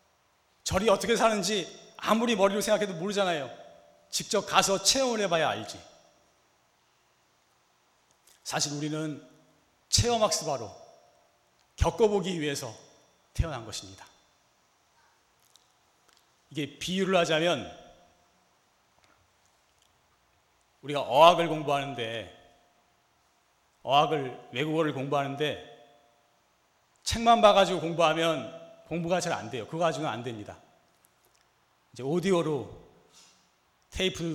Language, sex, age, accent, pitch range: Korean, male, 40-59, native, 140-205 Hz